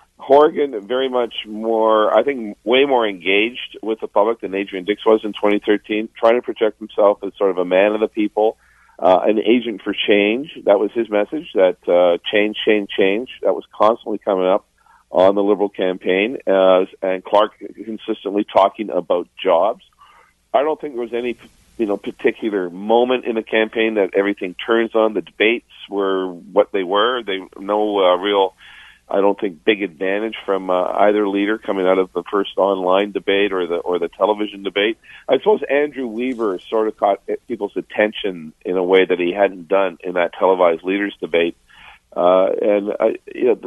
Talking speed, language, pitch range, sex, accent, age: 185 wpm, English, 95-115 Hz, male, American, 50-69